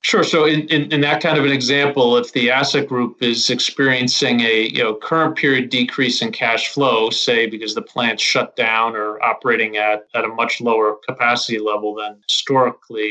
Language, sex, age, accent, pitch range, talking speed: English, male, 30-49, American, 110-135 Hz, 190 wpm